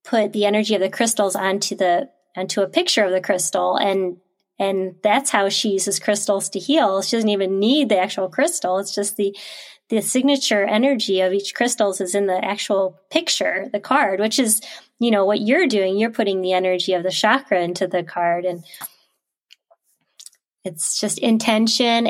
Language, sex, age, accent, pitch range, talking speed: English, female, 20-39, American, 195-245 Hz, 180 wpm